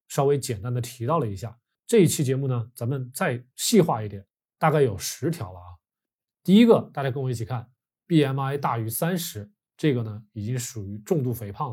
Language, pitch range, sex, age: Chinese, 115-150 Hz, male, 20-39